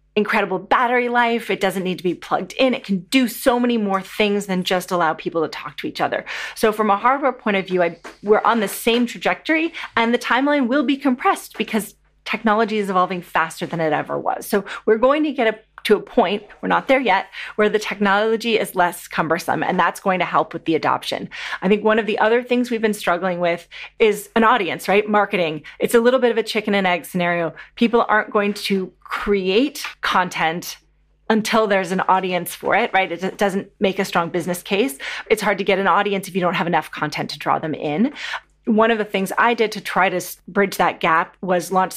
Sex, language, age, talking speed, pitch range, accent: female, English, 30-49, 225 wpm, 180-225 Hz, American